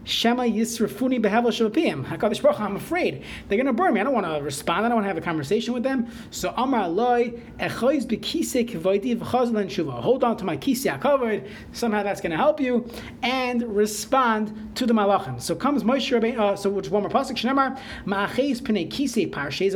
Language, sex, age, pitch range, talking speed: English, male, 30-49, 200-255 Hz, 220 wpm